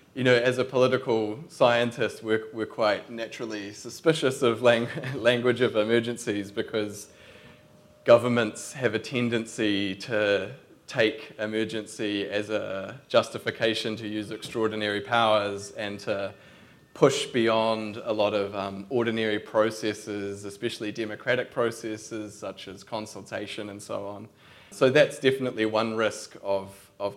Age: 20-39